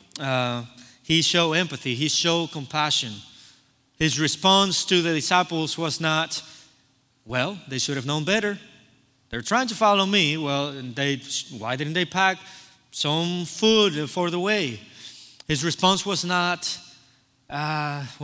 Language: English